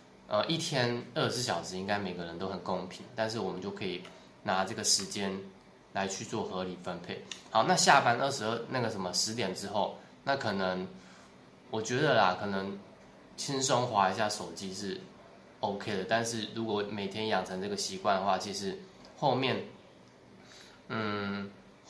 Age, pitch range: 20-39, 95-120 Hz